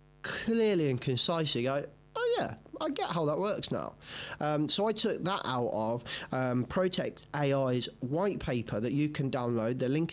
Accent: British